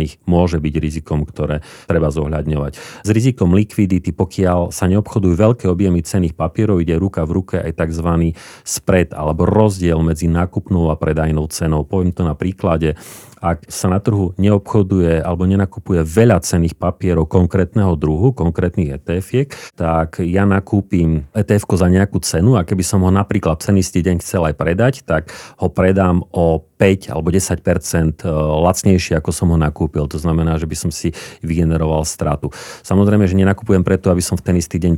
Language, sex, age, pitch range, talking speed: Slovak, male, 40-59, 80-95 Hz, 165 wpm